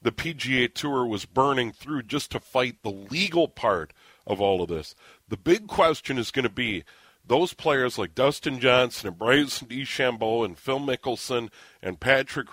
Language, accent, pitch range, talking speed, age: English, American, 115-140 Hz, 170 wpm, 40-59